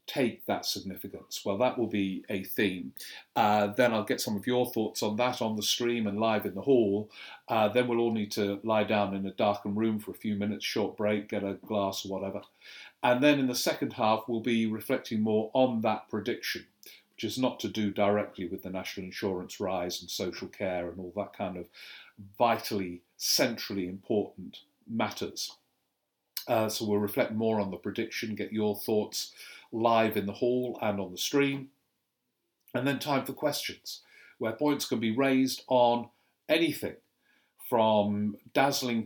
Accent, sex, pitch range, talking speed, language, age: British, male, 105-125 Hz, 185 wpm, English, 50-69